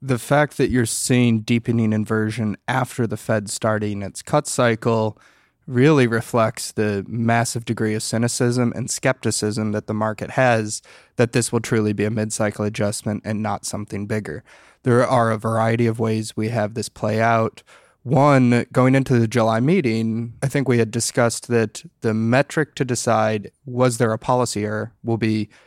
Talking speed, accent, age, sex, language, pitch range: 170 wpm, American, 20-39, male, English, 110-125 Hz